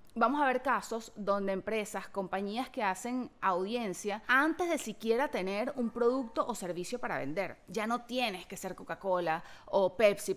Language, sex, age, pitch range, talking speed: Spanish, female, 30-49, 195-260 Hz, 160 wpm